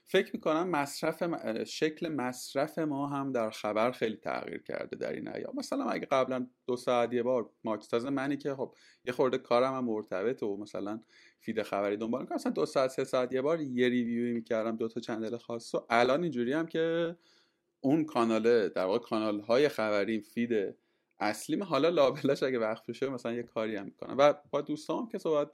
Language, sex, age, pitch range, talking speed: Persian, male, 30-49, 115-150 Hz, 185 wpm